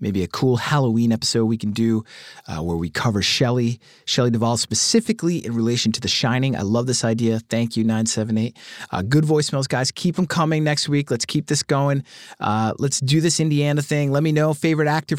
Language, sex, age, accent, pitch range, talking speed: English, male, 30-49, American, 120-170 Hz, 205 wpm